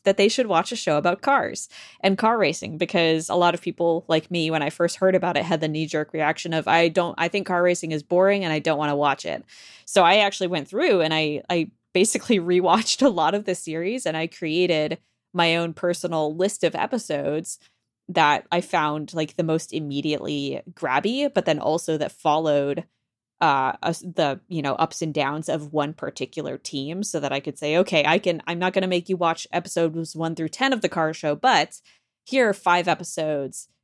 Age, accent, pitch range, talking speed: 20-39, American, 155-210 Hz, 215 wpm